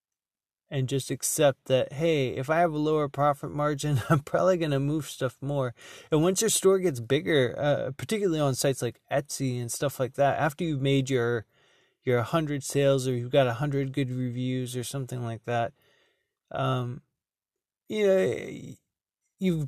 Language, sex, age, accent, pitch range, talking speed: English, male, 20-39, American, 130-150 Hz, 175 wpm